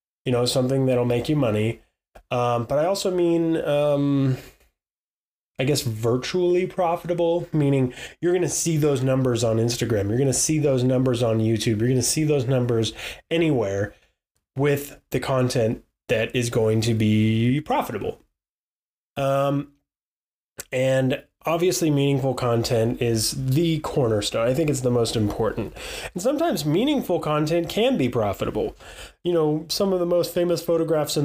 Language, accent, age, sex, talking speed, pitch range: English, American, 20-39, male, 150 wpm, 120-165 Hz